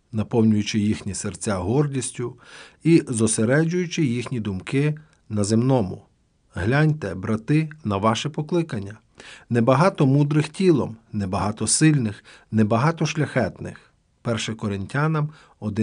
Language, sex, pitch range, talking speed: Ukrainian, male, 110-150 Hz, 90 wpm